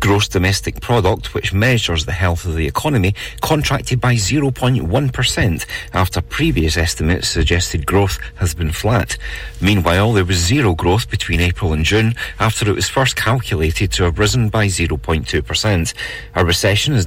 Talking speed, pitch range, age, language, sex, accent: 150 wpm, 85-115 Hz, 40-59, English, male, British